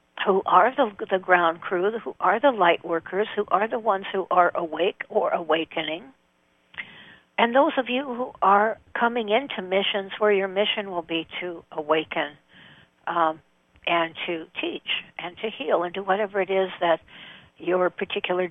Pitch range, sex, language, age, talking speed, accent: 165-220 Hz, female, English, 60-79, 165 wpm, American